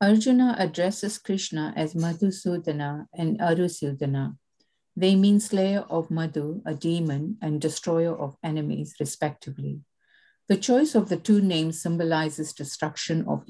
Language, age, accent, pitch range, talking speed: English, 50-69, Indian, 155-190 Hz, 125 wpm